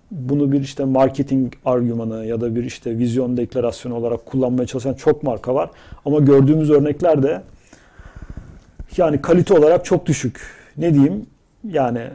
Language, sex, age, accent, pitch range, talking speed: Turkish, male, 40-59, native, 130-160 Hz, 145 wpm